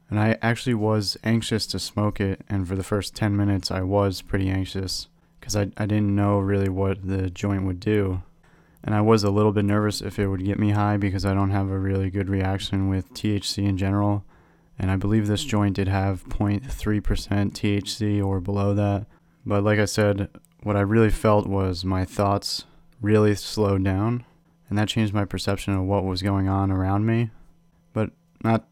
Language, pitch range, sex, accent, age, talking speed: English, 95-105 Hz, male, American, 30-49, 195 wpm